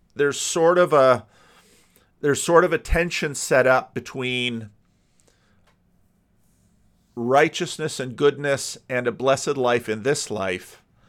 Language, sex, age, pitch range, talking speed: English, male, 40-59, 110-140 Hz, 120 wpm